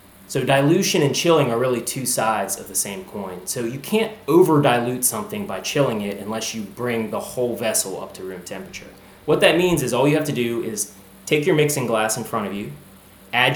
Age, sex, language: 20-39, male, English